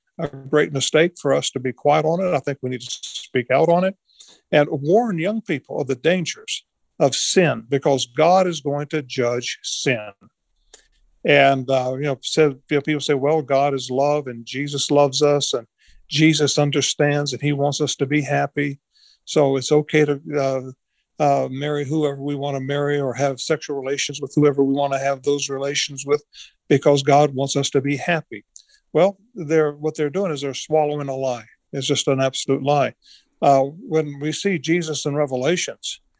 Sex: male